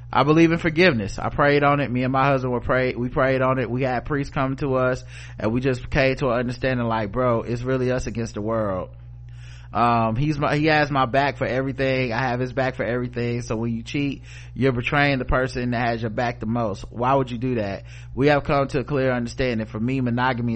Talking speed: 240 wpm